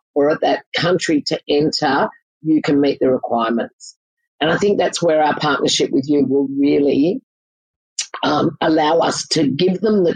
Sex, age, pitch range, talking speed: female, 50-69, 145-190 Hz, 170 wpm